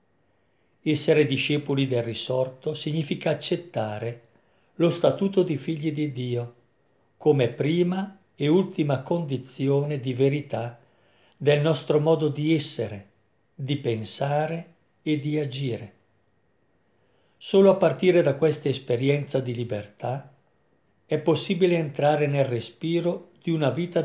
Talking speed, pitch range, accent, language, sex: 110 wpm, 125-160 Hz, native, Italian, male